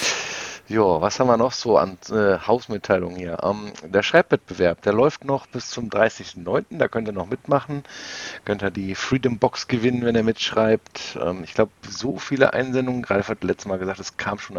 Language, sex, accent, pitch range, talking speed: German, male, German, 95-125 Hz, 195 wpm